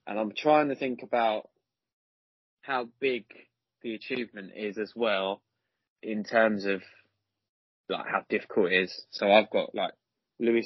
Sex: male